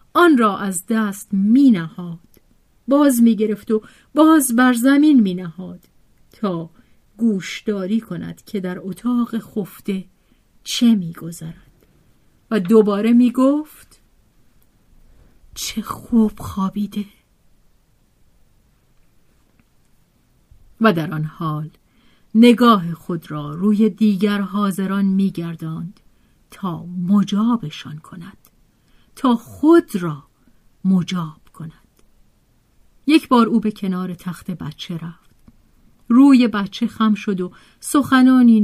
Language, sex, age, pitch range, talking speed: Persian, female, 40-59, 180-235 Hz, 100 wpm